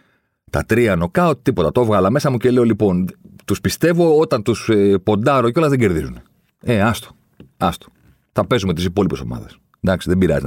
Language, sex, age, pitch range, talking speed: Greek, male, 40-59, 75-115 Hz, 185 wpm